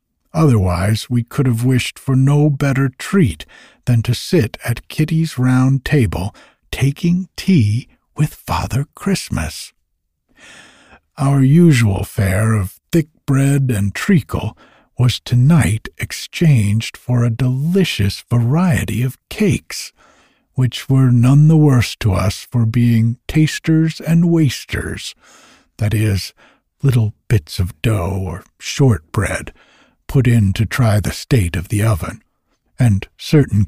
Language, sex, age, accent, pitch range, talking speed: English, male, 60-79, American, 100-135 Hz, 125 wpm